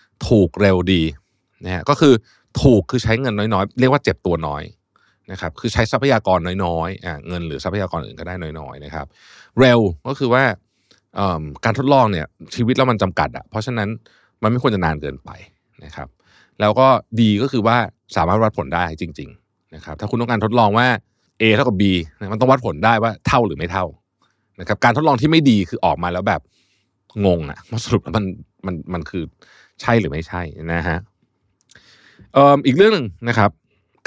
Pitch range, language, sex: 85-115 Hz, Thai, male